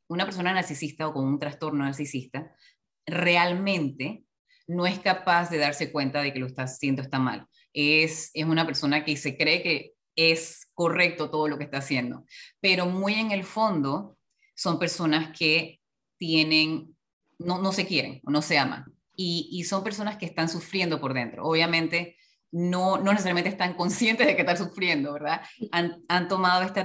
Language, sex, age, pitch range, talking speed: Spanish, female, 20-39, 145-180 Hz, 175 wpm